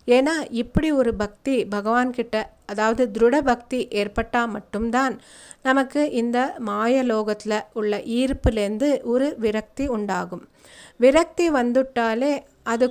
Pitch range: 220-270 Hz